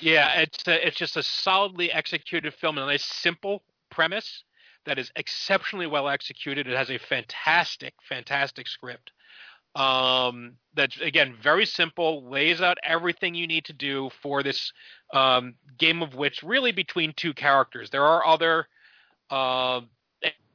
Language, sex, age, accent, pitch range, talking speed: English, male, 40-59, American, 125-155 Hz, 150 wpm